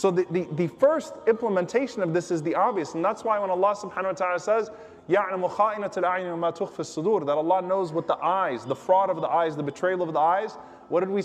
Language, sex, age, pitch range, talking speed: English, male, 20-39, 160-200 Hz, 215 wpm